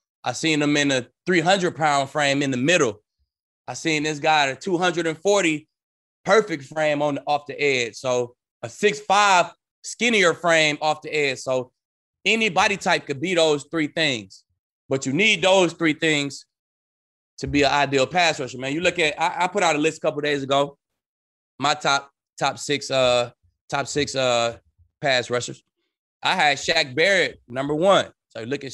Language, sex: English, male